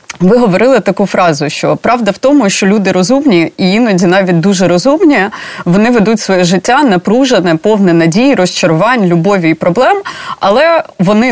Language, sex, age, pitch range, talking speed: Ukrainian, female, 30-49, 170-220 Hz, 155 wpm